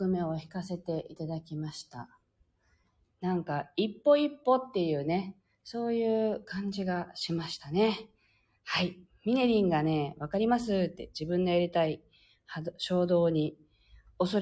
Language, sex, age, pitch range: Japanese, female, 40-59, 155-245 Hz